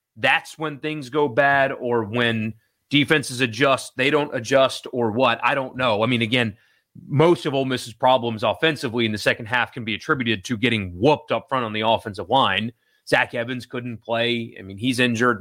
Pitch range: 115-145 Hz